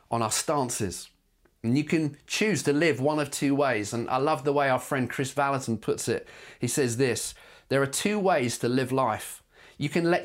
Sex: male